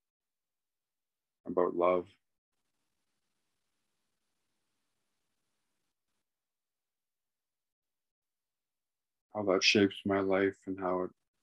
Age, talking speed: 50-69, 55 wpm